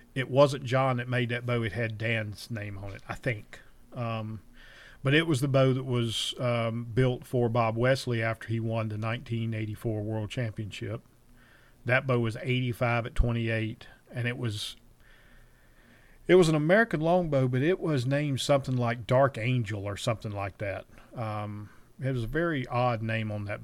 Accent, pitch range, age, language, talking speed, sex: American, 110-125 Hz, 40-59, English, 180 wpm, male